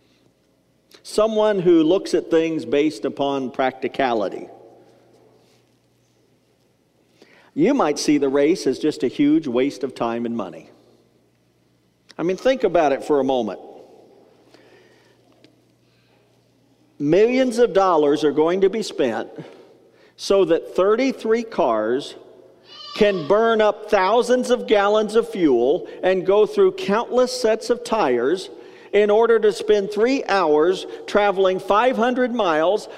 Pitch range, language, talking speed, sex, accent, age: 180-280 Hz, English, 120 wpm, male, American, 50-69